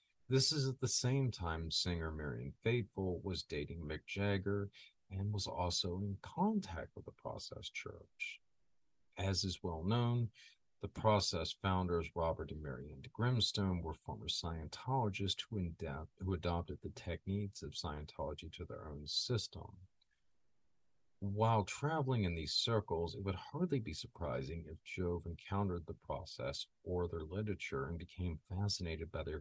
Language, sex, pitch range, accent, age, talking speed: English, male, 85-115 Hz, American, 40-59, 145 wpm